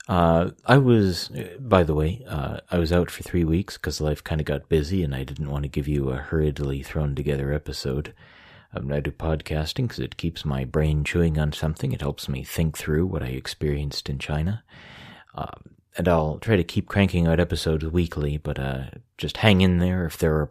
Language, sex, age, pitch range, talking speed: English, male, 30-49, 75-85 Hz, 210 wpm